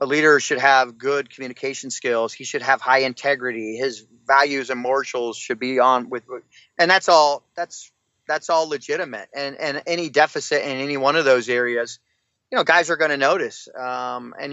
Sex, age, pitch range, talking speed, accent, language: male, 30-49, 120-150 Hz, 190 wpm, American, English